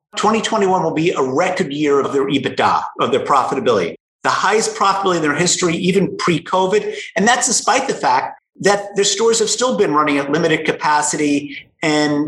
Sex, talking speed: male, 175 wpm